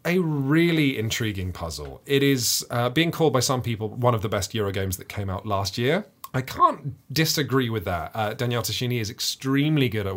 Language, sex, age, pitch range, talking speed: English, male, 30-49, 110-150 Hz, 205 wpm